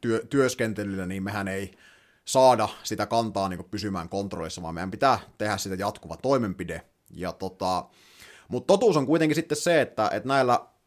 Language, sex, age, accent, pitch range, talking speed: Finnish, male, 30-49, native, 95-125 Hz, 155 wpm